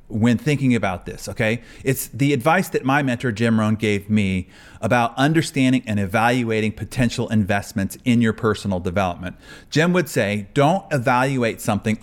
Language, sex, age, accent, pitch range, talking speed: English, male, 30-49, American, 110-150 Hz, 155 wpm